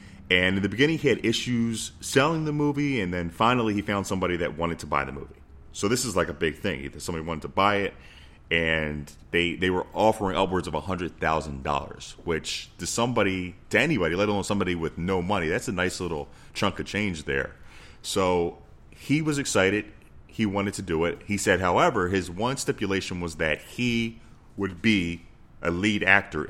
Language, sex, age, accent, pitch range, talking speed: English, male, 30-49, American, 80-105 Hz, 190 wpm